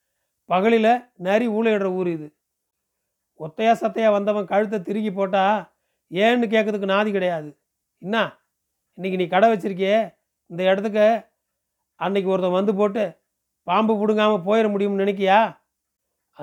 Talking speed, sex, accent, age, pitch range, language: 115 wpm, male, native, 40-59, 175-215 Hz, Tamil